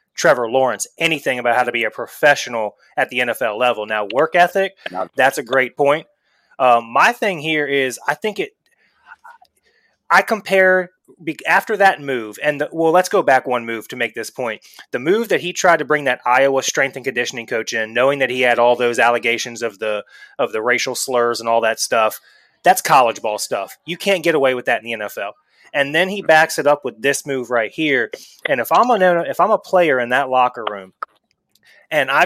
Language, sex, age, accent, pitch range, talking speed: English, male, 20-39, American, 120-165 Hz, 215 wpm